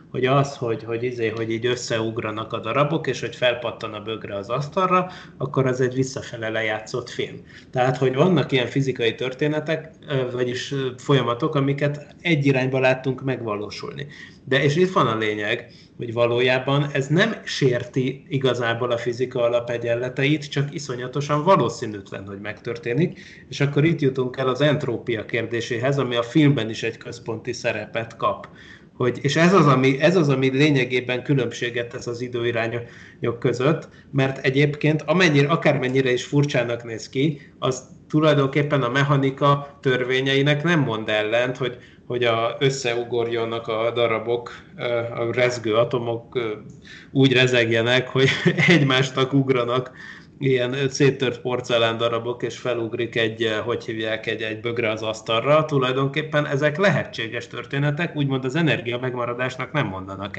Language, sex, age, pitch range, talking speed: Hungarian, male, 30-49, 120-145 Hz, 140 wpm